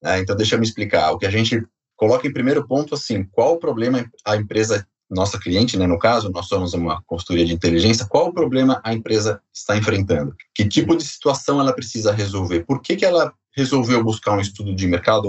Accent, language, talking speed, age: Brazilian, Portuguese, 210 wpm, 30-49